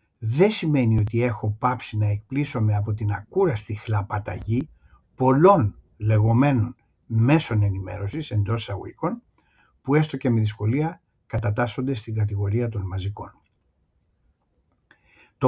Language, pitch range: Greek, 105-140 Hz